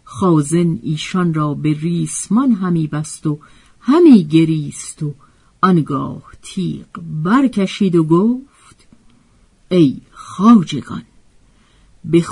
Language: Persian